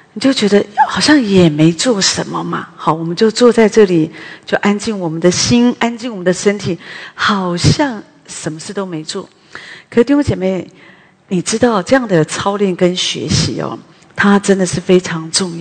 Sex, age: female, 40-59